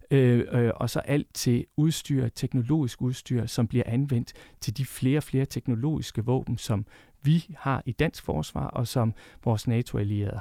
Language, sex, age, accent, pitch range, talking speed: Danish, male, 40-59, native, 115-140 Hz, 165 wpm